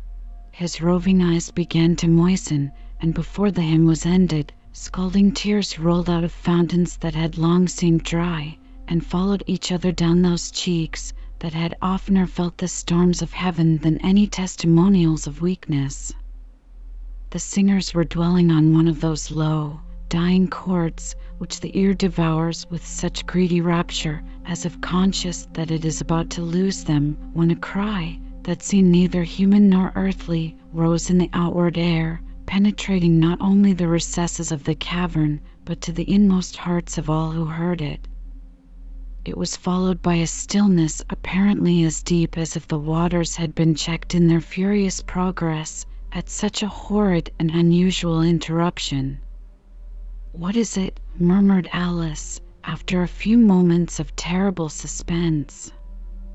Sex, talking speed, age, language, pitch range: female, 150 wpm, 50-69, English, 160-185 Hz